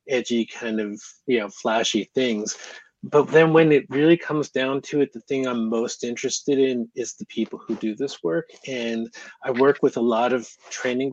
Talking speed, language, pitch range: 200 wpm, English, 115-140 Hz